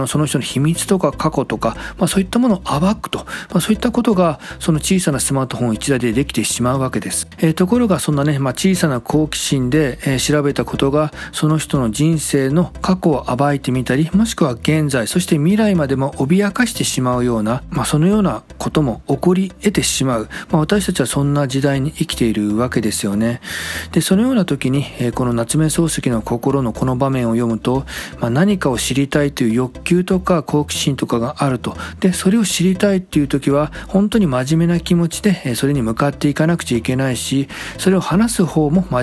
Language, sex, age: Japanese, male, 40-59